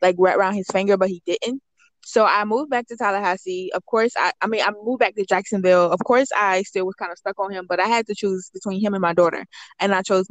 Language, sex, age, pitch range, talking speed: English, female, 20-39, 180-215 Hz, 275 wpm